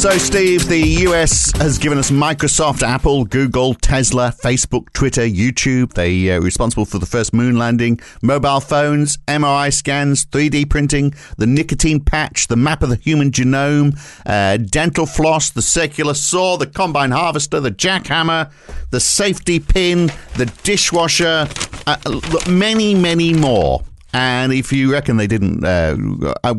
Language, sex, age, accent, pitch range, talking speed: English, male, 50-69, British, 105-145 Hz, 145 wpm